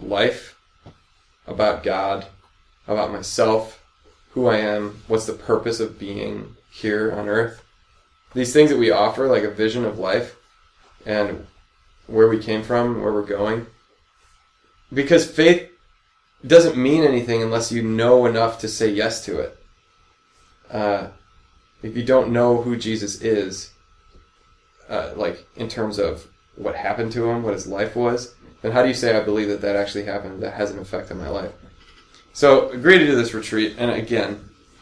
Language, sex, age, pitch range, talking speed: English, male, 20-39, 100-115 Hz, 165 wpm